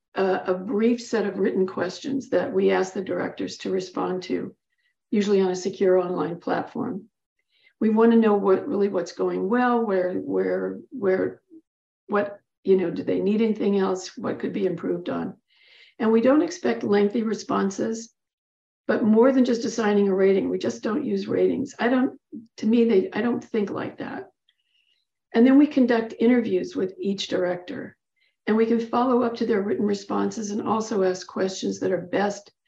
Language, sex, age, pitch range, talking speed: English, female, 60-79, 190-240 Hz, 180 wpm